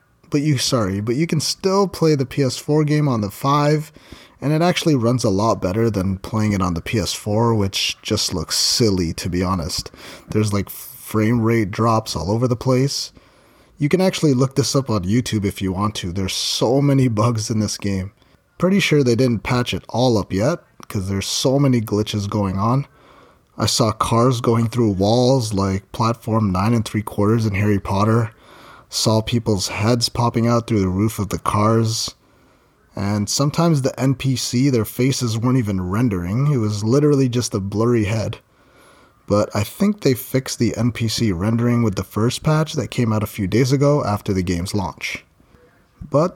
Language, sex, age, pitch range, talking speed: English, male, 30-49, 105-135 Hz, 185 wpm